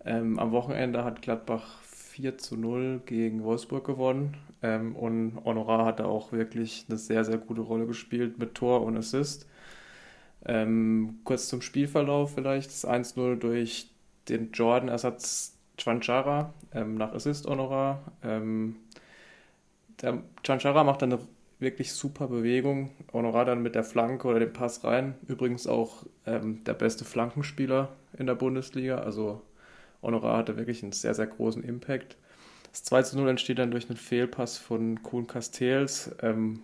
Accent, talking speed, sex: German, 150 wpm, male